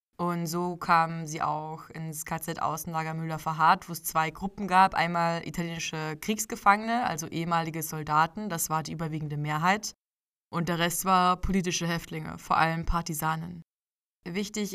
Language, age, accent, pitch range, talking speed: German, 20-39, German, 165-180 Hz, 140 wpm